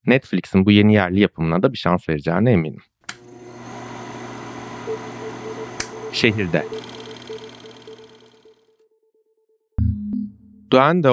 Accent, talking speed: native, 65 wpm